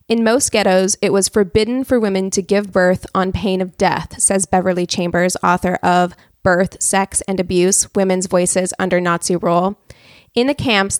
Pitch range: 185-225 Hz